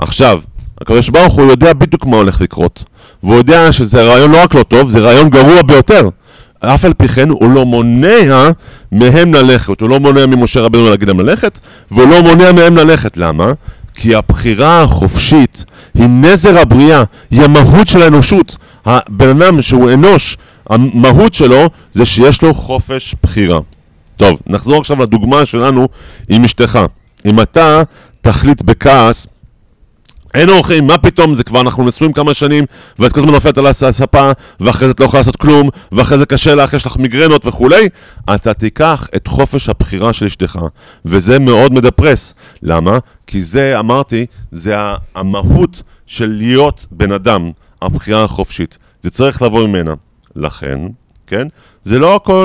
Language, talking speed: Hebrew, 150 wpm